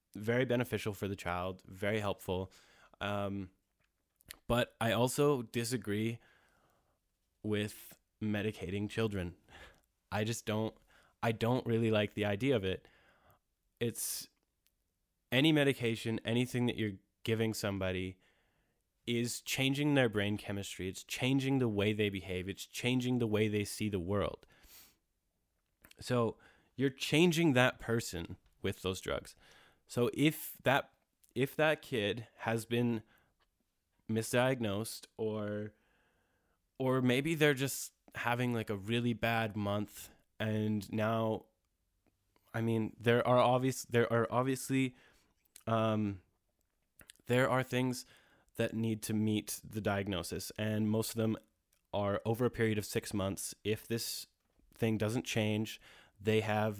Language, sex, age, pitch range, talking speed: English, male, 20-39, 100-120 Hz, 125 wpm